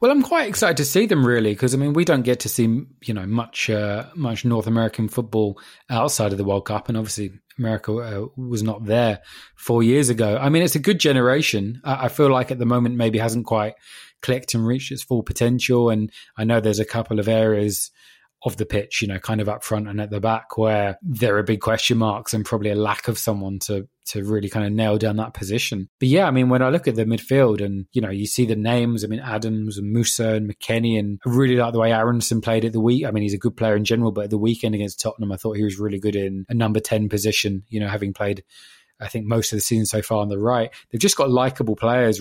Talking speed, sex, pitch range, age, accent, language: 260 wpm, male, 105-125 Hz, 20-39, British, English